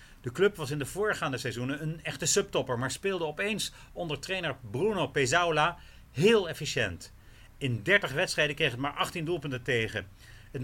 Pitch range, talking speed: 125-170 Hz, 165 wpm